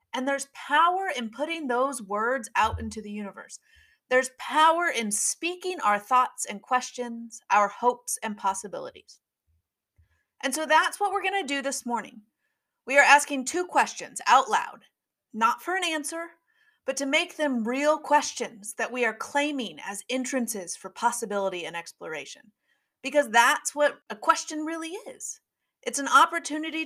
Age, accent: 30-49, American